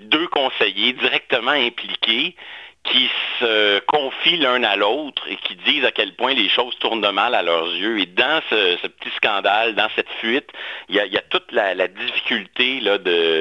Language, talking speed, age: French, 190 wpm, 50-69